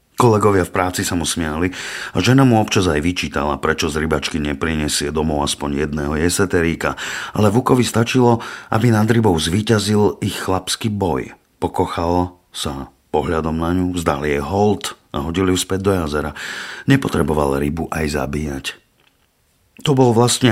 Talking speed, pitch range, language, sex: 150 wpm, 75-100 Hz, Slovak, male